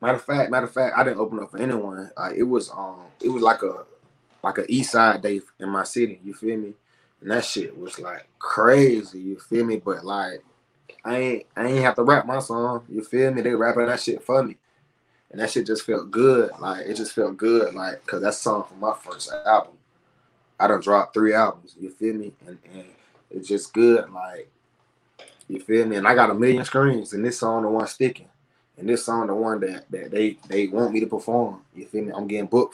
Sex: male